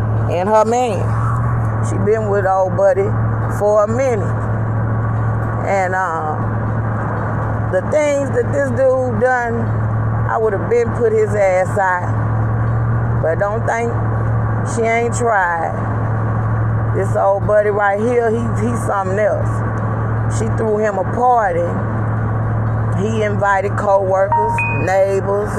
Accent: American